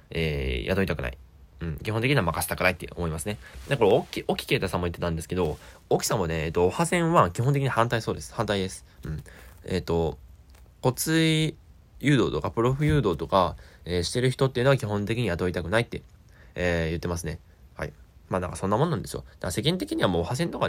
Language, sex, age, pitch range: Japanese, male, 20-39, 80-120 Hz